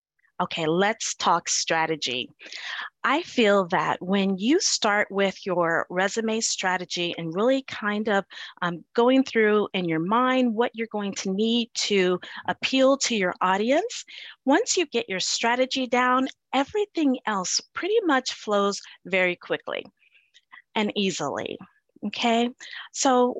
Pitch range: 185-250 Hz